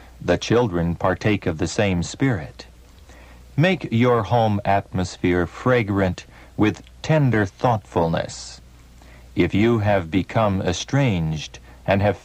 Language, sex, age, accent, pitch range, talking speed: English, male, 60-79, American, 85-120 Hz, 110 wpm